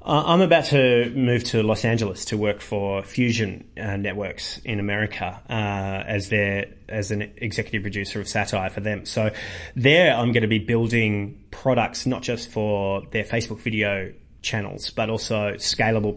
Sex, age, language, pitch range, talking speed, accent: male, 30-49, English, 105-120 Hz, 165 wpm, Australian